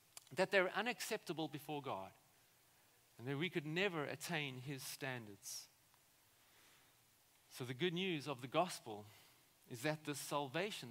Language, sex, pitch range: English, male, 140-205 Hz